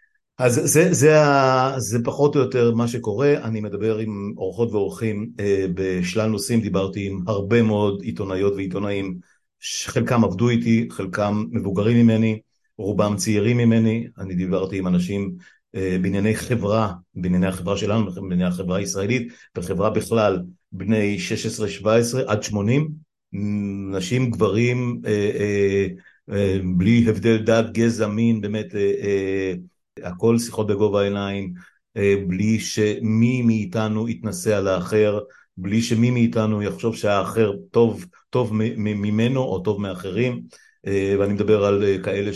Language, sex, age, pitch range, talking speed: Hebrew, male, 50-69, 100-115 Hz, 120 wpm